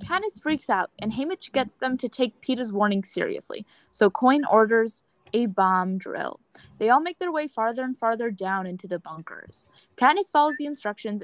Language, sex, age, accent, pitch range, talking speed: English, female, 20-39, American, 200-265 Hz, 180 wpm